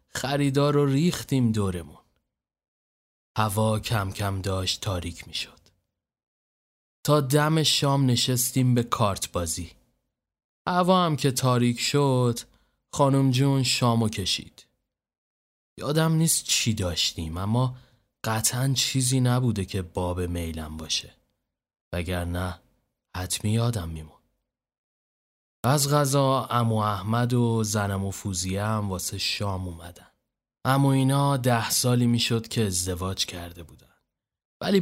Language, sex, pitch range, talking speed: Persian, male, 95-130 Hz, 105 wpm